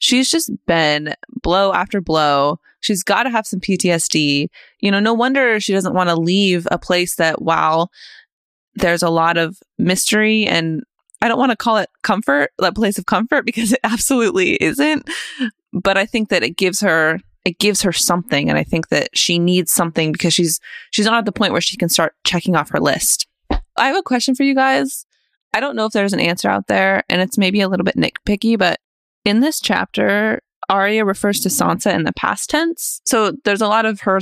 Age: 20-39